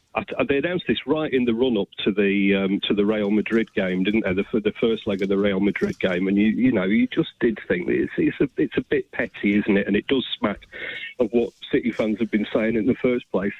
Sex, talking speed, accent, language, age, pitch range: male, 270 wpm, British, English, 40-59, 105-125 Hz